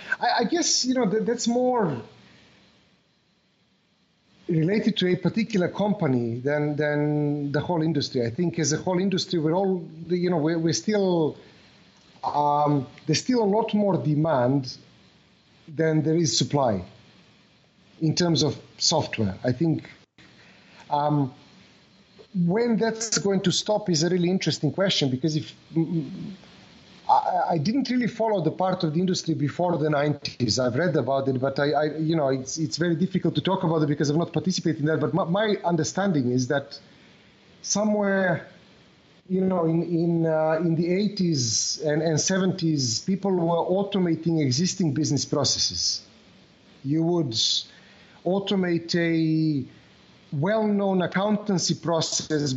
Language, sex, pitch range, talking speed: English, male, 150-185 Hz, 145 wpm